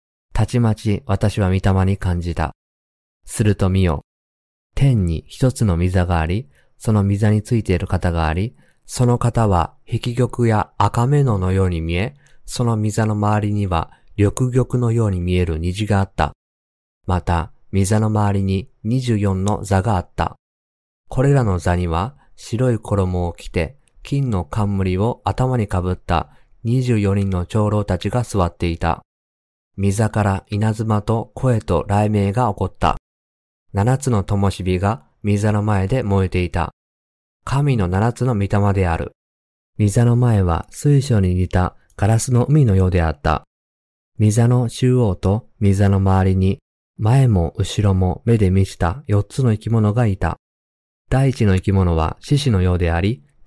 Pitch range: 90-115 Hz